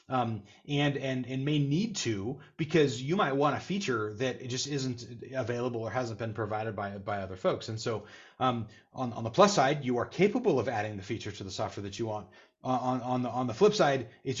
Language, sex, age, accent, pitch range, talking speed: English, male, 30-49, American, 105-135 Hz, 230 wpm